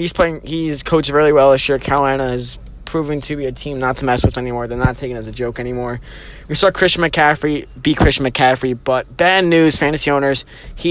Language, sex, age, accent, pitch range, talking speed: English, male, 20-39, American, 125-150 Hz, 230 wpm